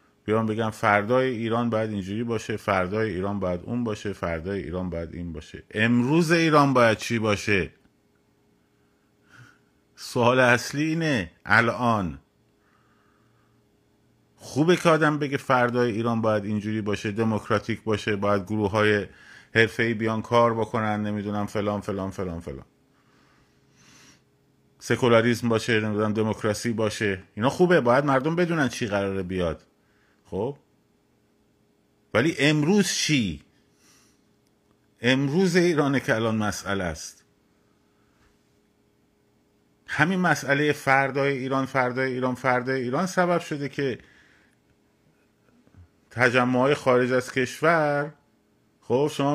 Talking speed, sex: 110 wpm, male